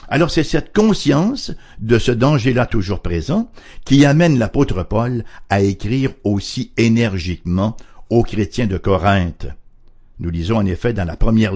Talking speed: 145 wpm